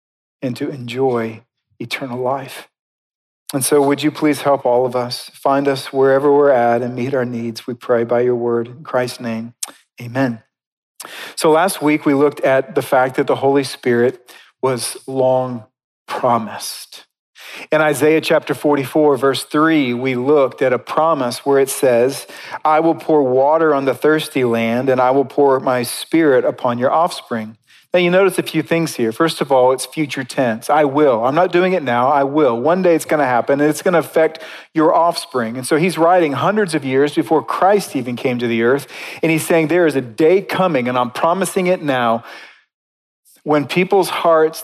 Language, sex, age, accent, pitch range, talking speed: English, male, 40-59, American, 125-155 Hz, 190 wpm